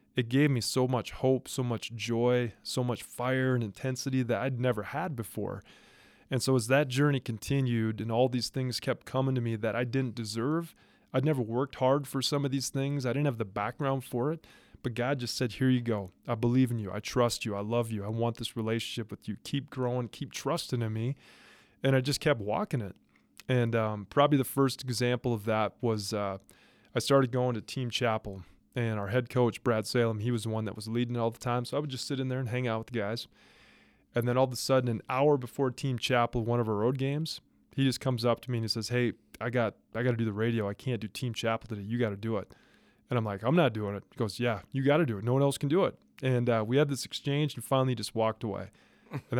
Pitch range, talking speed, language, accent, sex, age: 115-135 Hz, 255 wpm, English, American, male, 20-39